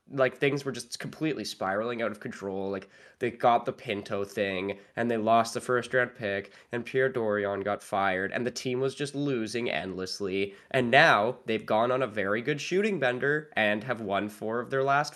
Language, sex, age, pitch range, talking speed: English, male, 10-29, 100-140 Hz, 200 wpm